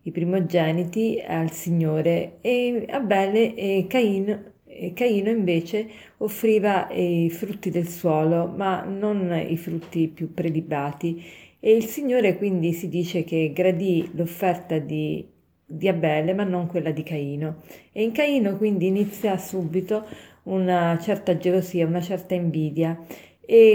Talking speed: 130 wpm